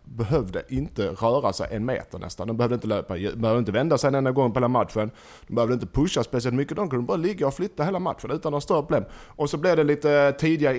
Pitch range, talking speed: 115-150 Hz, 250 wpm